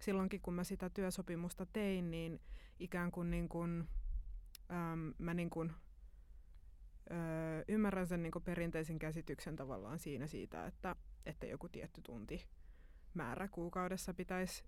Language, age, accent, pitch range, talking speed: Finnish, 20-39, native, 165-190 Hz, 130 wpm